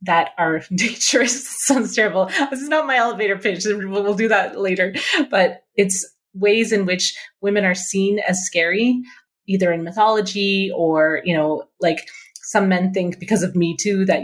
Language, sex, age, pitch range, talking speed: English, female, 30-49, 165-205 Hz, 170 wpm